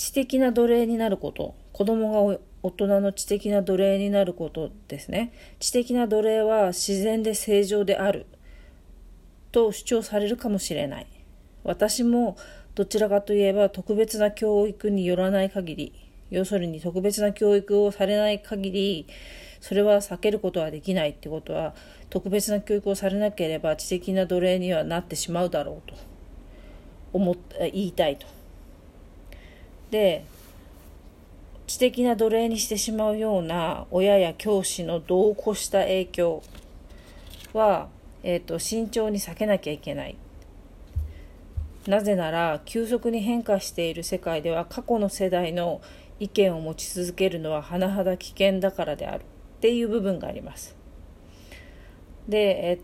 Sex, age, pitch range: female, 40-59, 155-210 Hz